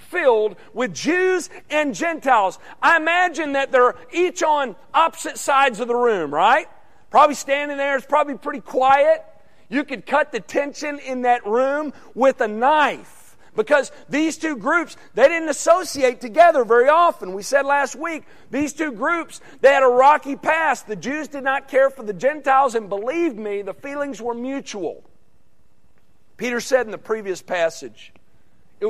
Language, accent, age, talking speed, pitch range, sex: English, American, 40-59, 165 wpm, 240-305 Hz, male